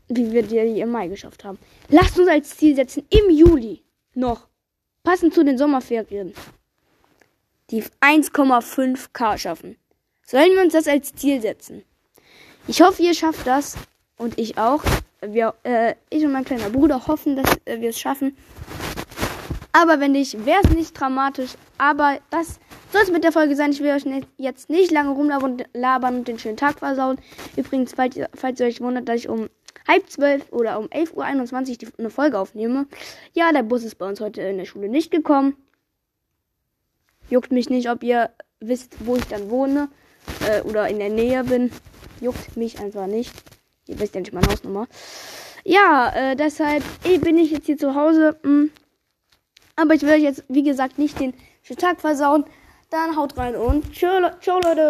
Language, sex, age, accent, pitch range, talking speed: German, female, 10-29, German, 240-310 Hz, 170 wpm